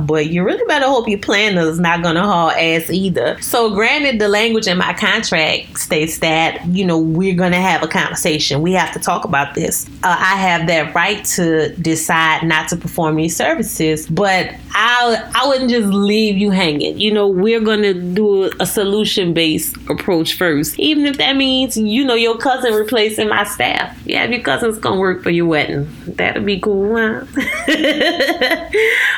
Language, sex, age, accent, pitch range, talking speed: English, female, 20-39, American, 160-215 Hz, 185 wpm